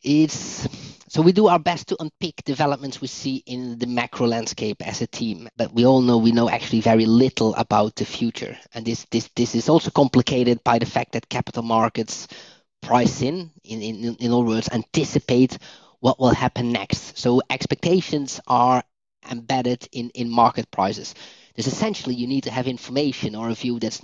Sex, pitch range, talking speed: male, 115-135 Hz, 185 wpm